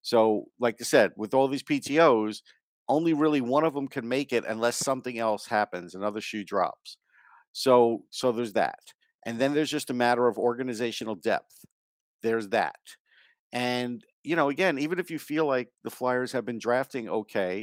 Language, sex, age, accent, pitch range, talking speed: English, male, 50-69, American, 115-140 Hz, 180 wpm